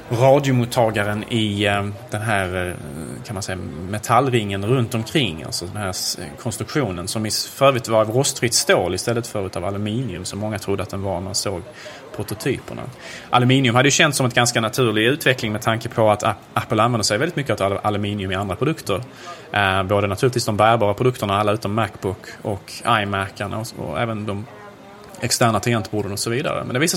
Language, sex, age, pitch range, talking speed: Swedish, male, 20-39, 100-125 Hz, 175 wpm